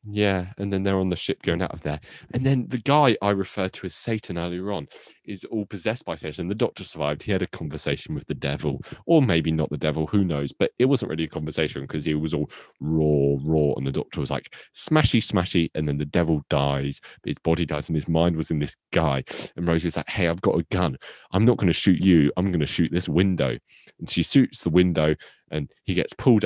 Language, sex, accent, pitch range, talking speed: English, male, British, 80-115 Hz, 245 wpm